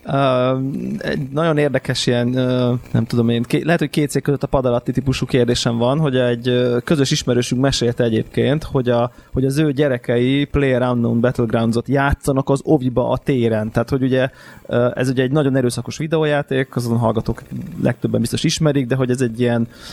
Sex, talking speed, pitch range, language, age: male, 180 wpm, 120-140 Hz, Hungarian, 20-39